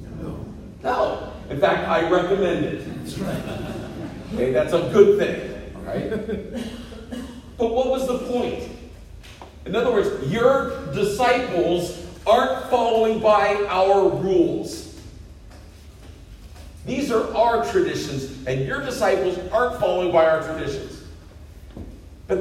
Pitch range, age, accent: 125-205 Hz, 50-69, American